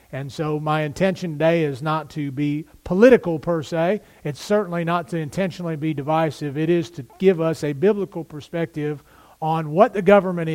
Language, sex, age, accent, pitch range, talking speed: English, male, 40-59, American, 150-185 Hz, 175 wpm